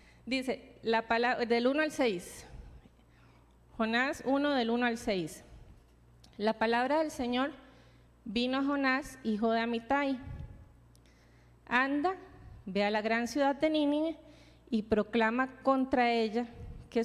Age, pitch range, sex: 30-49, 190-260 Hz, female